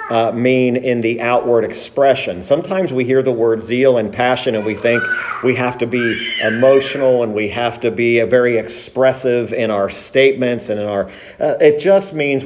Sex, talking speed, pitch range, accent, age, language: male, 190 wpm, 115-135 Hz, American, 50-69, English